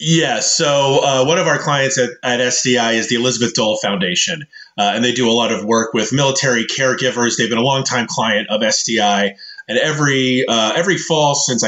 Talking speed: 200 wpm